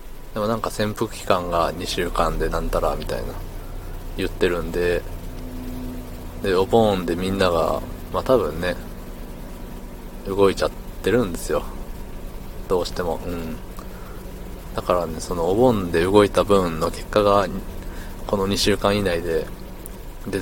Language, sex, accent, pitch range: Japanese, male, native, 85-100 Hz